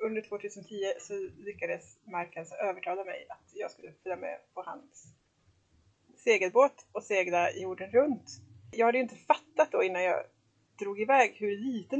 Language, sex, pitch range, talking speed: English, female, 190-270 Hz, 155 wpm